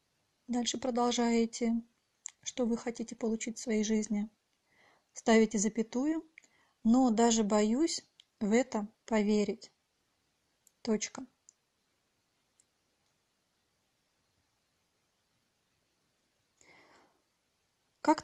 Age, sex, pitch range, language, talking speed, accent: 30-49, female, 220-250 Hz, Russian, 65 wpm, native